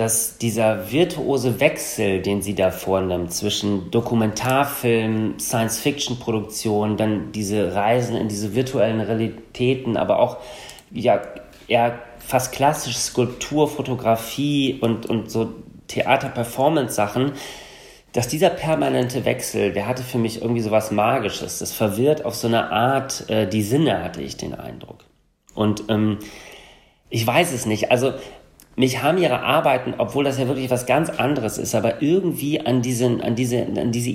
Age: 40-59